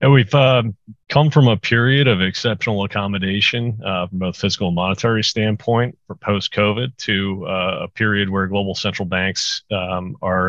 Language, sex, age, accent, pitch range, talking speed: English, male, 40-59, American, 90-110 Hz, 165 wpm